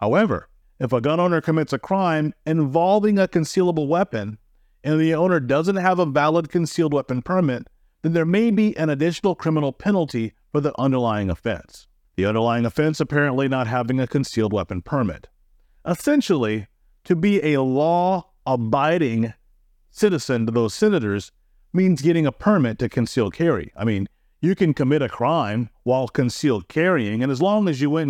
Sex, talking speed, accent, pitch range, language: male, 160 wpm, American, 120-170 Hz, English